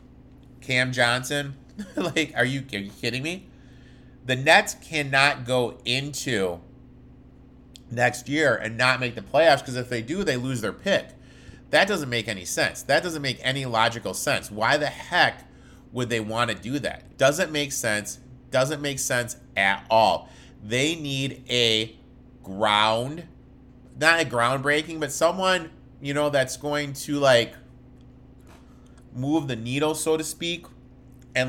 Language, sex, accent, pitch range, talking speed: English, male, American, 115-140 Hz, 150 wpm